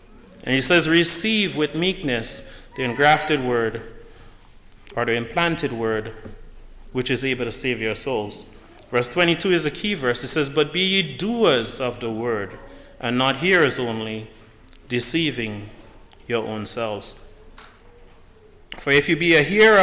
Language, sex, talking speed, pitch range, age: English, male, 150 wpm, 120-185 Hz, 30-49